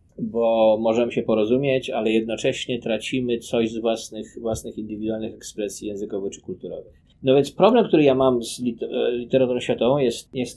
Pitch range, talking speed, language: 110-135 Hz, 155 wpm, Polish